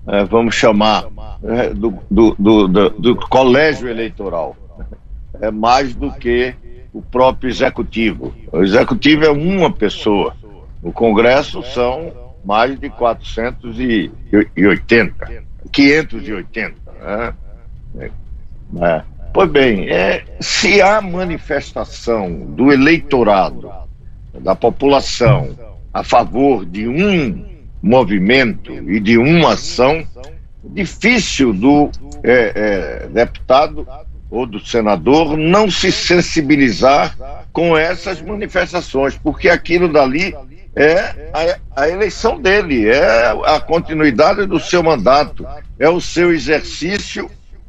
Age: 60-79